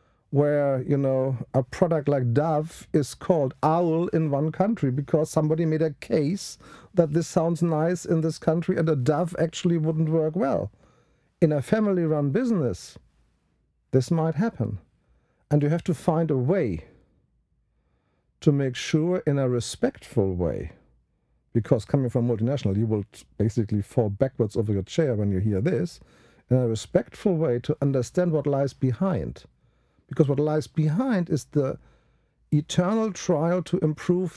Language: English